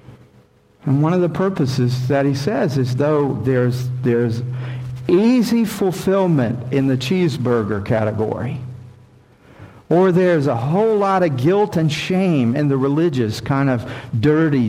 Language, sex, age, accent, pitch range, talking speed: English, male, 50-69, American, 125-150 Hz, 135 wpm